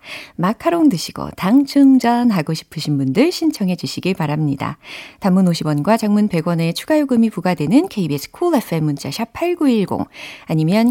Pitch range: 155-240 Hz